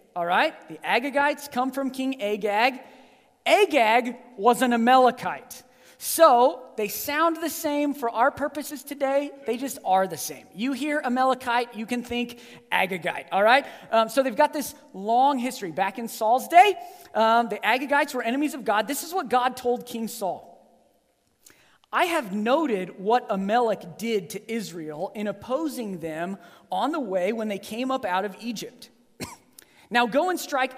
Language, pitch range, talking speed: English, 175-255 Hz, 160 wpm